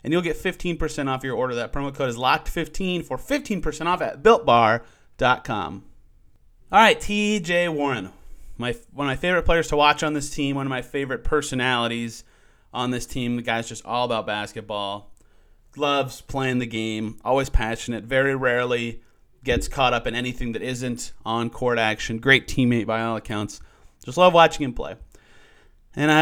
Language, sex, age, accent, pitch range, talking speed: English, male, 30-49, American, 115-155 Hz, 170 wpm